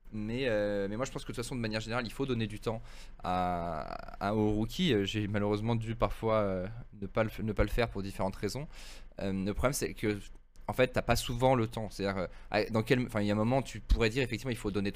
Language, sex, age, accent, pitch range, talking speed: French, male, 20-39, French, 100-120 Hz, 235 wpm